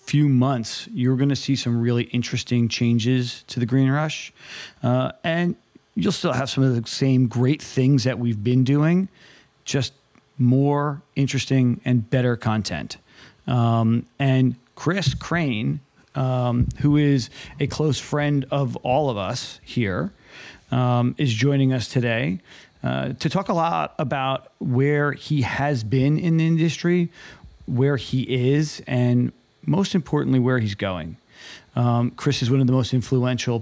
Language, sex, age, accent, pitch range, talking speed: English, male, 40-59, American, 120-140 Hz, 150 wpm